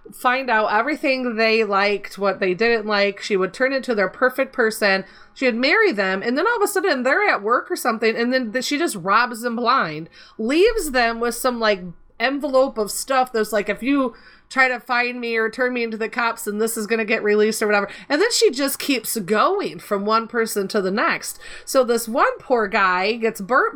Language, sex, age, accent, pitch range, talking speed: English, female, 30-49, American, 215-275 Hz, 220 wpm